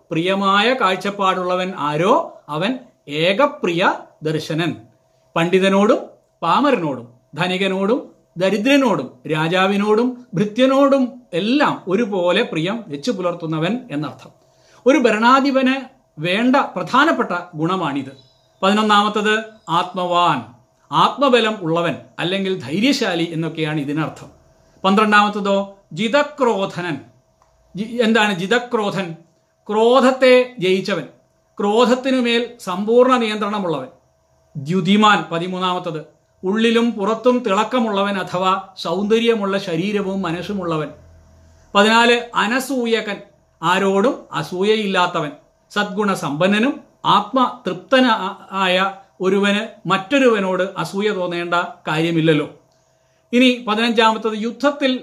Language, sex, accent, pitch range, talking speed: Malayalam, male, native, 175-235 Hz, 70 wpm